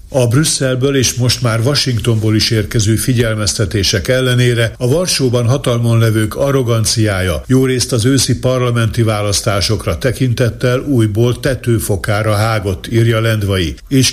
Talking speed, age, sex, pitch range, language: 120 wpm, 60-79, male, 110-125 Hz, Hungarian